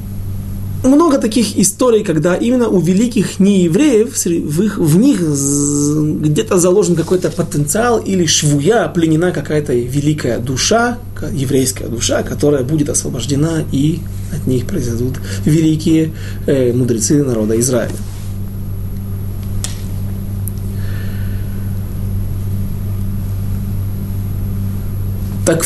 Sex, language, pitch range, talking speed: male, Russian, 100-160 Hz, 85 wpm